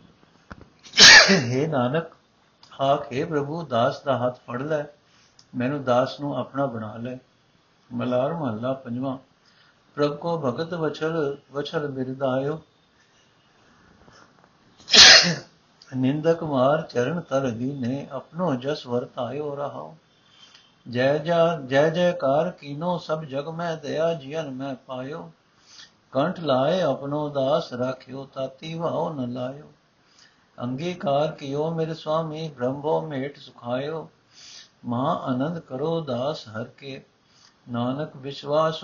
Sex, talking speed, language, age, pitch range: male, 115 wpm, Punjabi, 60-79, 125-150 Hz